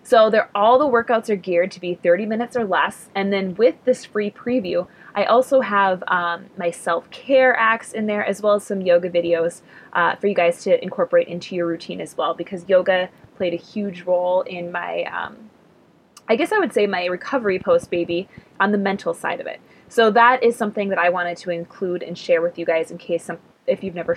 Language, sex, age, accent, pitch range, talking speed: English, female, 20-39, American, 175-230 Hz, 215 wpm